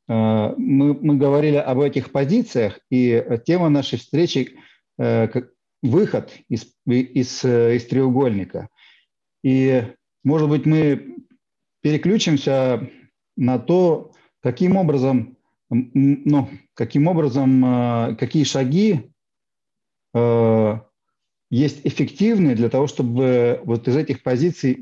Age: 40-59